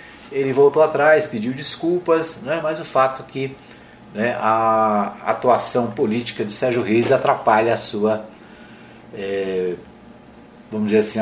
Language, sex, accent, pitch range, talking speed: Portuguese, male, Brazilian, 115-155 Hz, 130 wpm